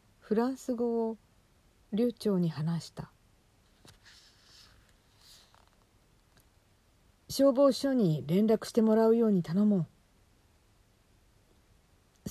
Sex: female